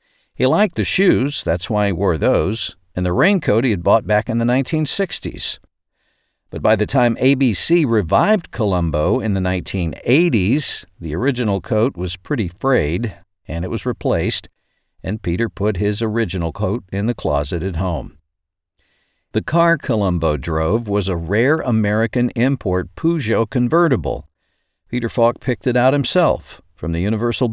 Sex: male